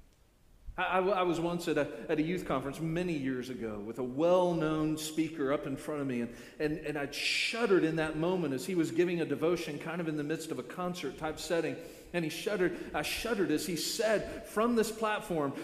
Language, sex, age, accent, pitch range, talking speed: English, male, 40-59, American, 150-215 Hz, 220 wpm